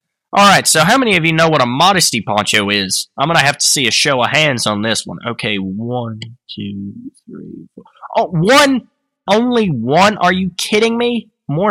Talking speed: 210 wpm